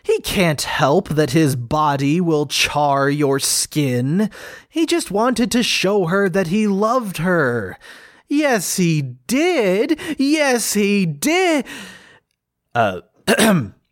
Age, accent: 20-39, American